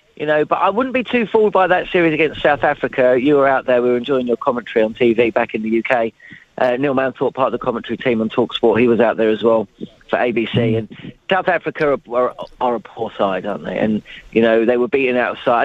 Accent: British